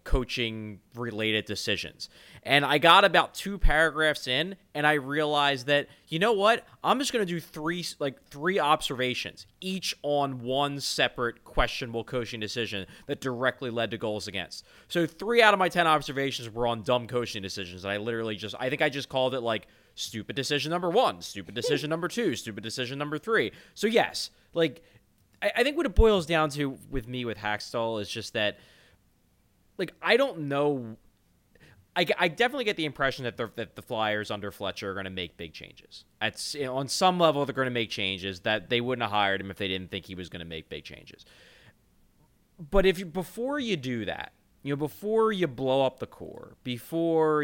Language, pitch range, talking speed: English, 105-155 Hz, 200 wpm